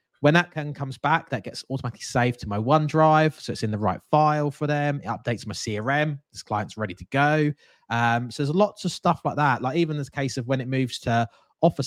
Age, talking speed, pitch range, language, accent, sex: 20-39, 240 wpm, 110-145 Hz, English, British, male